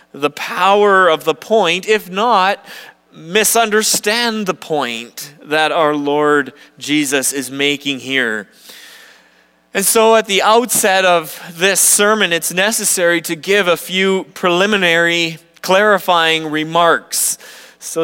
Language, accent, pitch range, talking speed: English, American, 165-200 Hz, 115 wpm